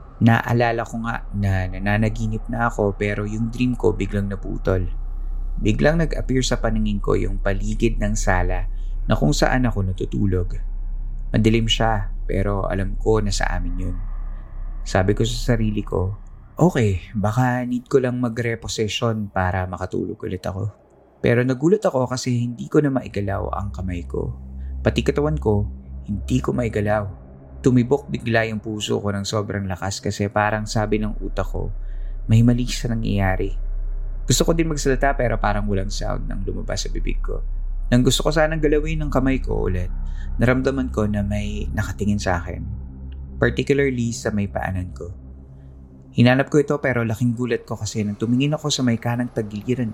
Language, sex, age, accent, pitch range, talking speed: Filipino, male, 20-39, native, 95-120 Hz, 160 wpm